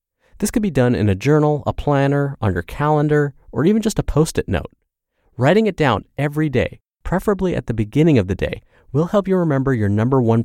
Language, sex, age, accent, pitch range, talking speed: English, male, 30-49, American, 100-150 Hz, 210 wpm